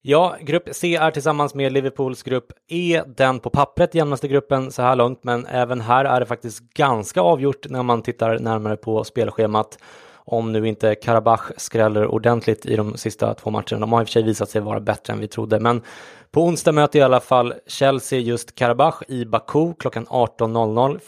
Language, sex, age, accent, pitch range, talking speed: English, male, 20-39, Swedish, 110-130 Hz, 195 wpm